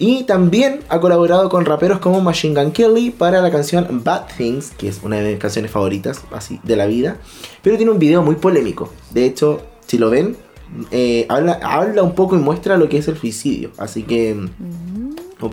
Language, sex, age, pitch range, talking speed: Spanish, male, 20-39, 140-190 Hz, 195 wpm